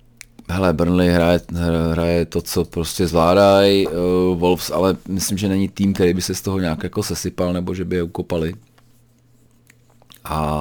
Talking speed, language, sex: 165 wpm, Czech, male